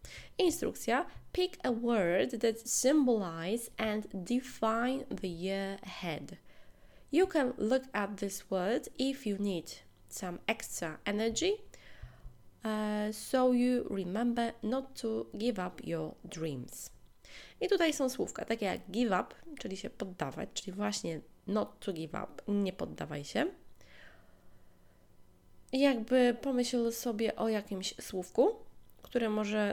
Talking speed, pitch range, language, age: 120 wpm, 185-245 Hz, Polish, 20-39